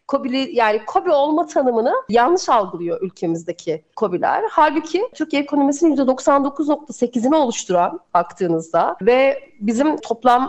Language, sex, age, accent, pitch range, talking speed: Turkish, female, 40-59, native, 195-265 Hz, 105 wpm